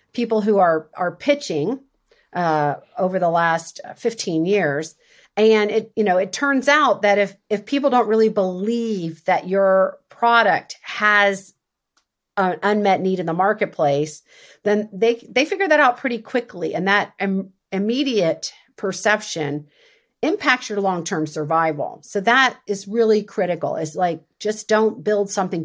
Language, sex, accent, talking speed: English, female, American, 150 wpm